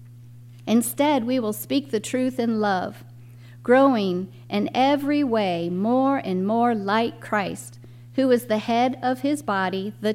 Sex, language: female, English